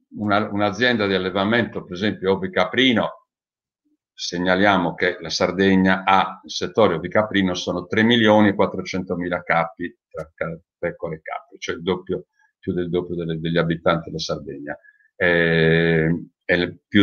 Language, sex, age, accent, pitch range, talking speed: Italian, male, 50-69, native, 95-150 Hz, 140 wpm